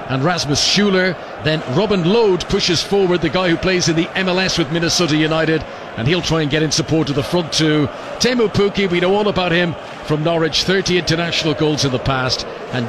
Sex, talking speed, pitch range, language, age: male, 210 wpm, 140-175 Hz, English, 50-69